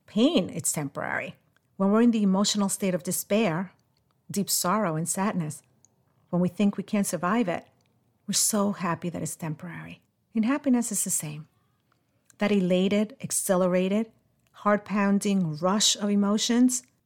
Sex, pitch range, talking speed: female, 160-210 Hz, 140 wpm